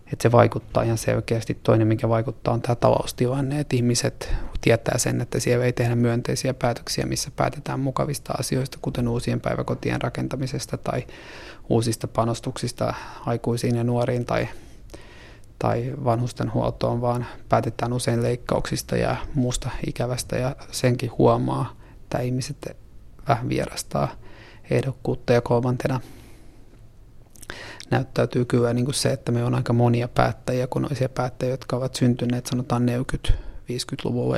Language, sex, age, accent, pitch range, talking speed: Finnish, male, 30-49, native, 115-125 Hz, 130 wpm